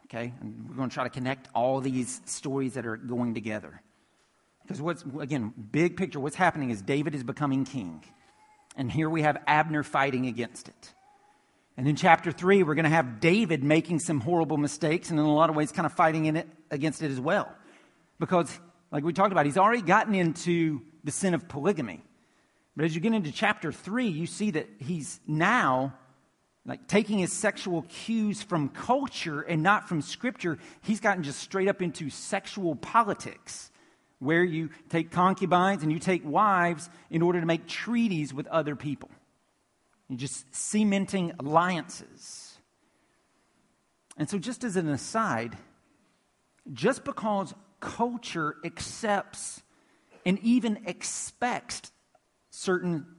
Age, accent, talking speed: 50-69, American, 160 wpm